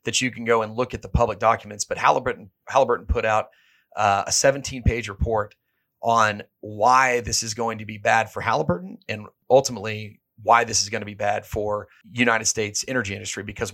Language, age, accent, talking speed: English, 30-49, American, 190 wpm